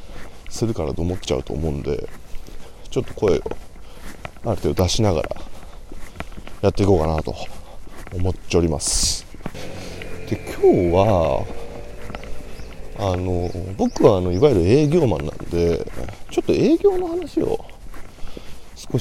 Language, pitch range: Japanese, 85-140 Hz